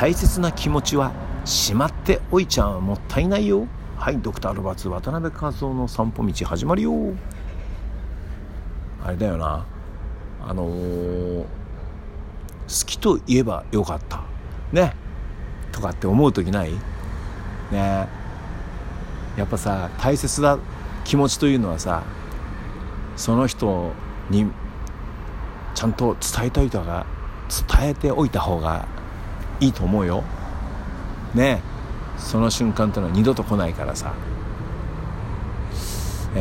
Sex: male